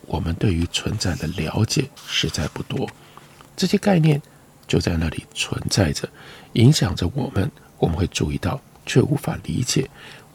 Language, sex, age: Chinese, male, 50-69